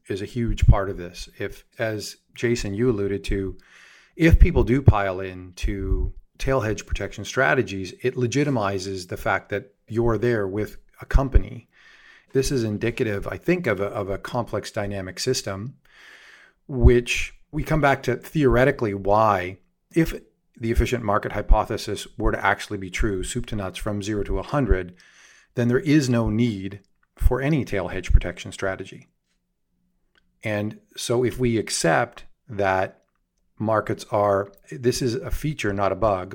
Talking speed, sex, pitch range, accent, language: 155 wpm, male, 95-120 Hz, American, English